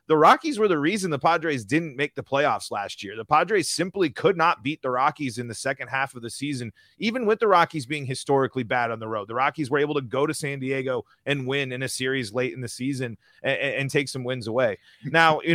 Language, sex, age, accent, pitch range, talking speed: English, male, 30-49, American, 130-165 Hz, 245 wpm